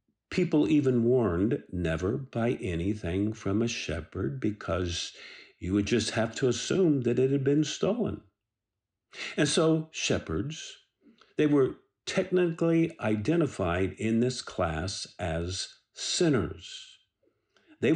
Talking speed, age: 115 wpm, 50-69